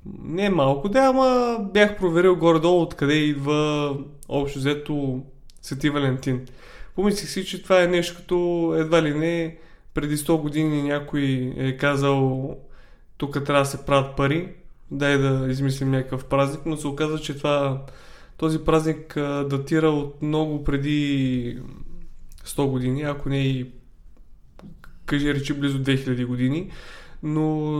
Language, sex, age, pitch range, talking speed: Bulgarian, male, 20-39, 140-165 Hz, 135 wpm